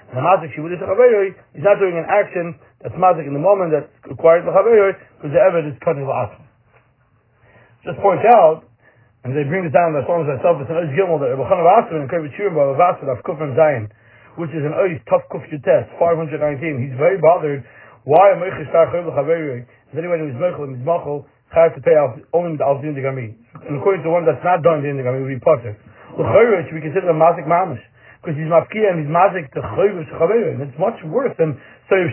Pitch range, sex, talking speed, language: 135-185 Hz, male, 205 wpm, English